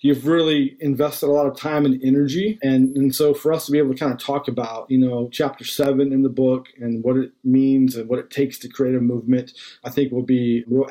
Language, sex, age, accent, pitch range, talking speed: English, male, 40-59, American, 125-150 Hz, 255 wpm